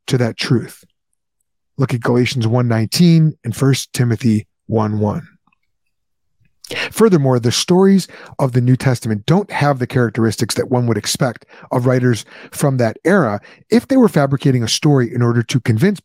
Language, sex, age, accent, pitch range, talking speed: English, male, 30-49, American, 120-160 Hz, 155 wpm